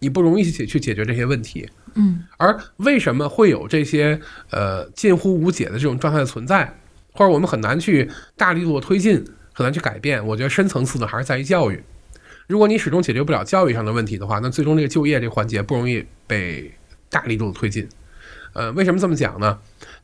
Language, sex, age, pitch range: Chinese, male, 20-39, 110-165 Hz